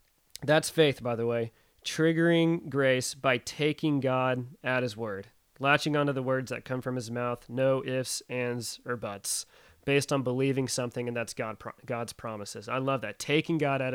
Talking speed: 180 wpm